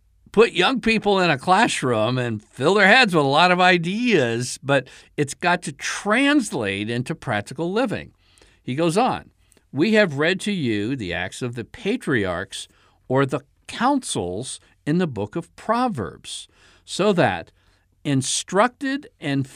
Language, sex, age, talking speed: English, male, 60-79, 145 wpm